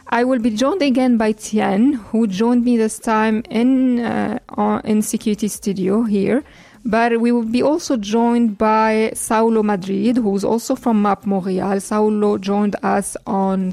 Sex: female